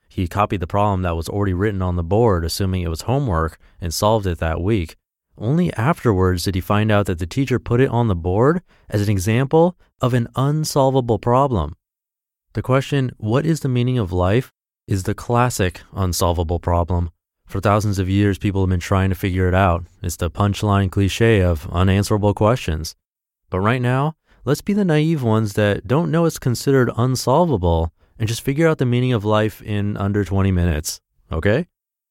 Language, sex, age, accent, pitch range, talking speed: English, male, 30-49, American, 90-120 Hz, 185 wpm